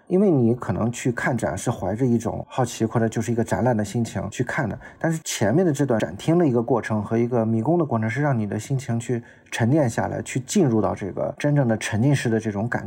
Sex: male